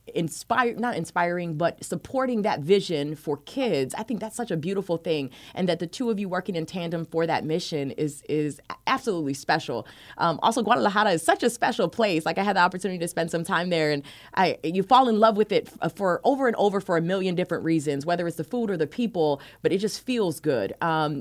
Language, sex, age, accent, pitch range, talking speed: English, female, 20-39, American, 150-190 Hz, 225 wpm